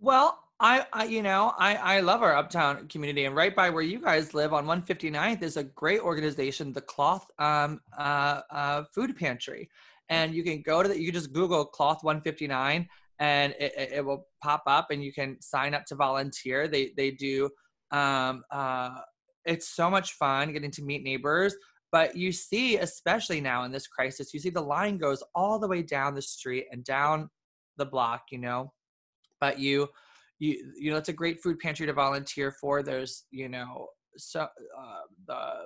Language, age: English, 20-39